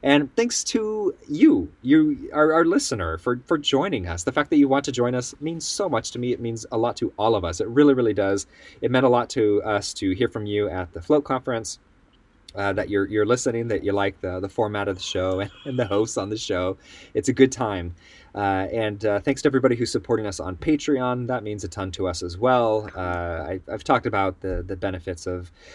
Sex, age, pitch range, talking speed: male, 30-49, 95-130 Hz, 240 wpm